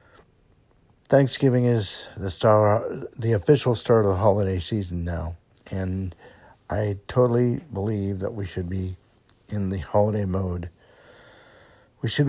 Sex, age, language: male, 60-79, English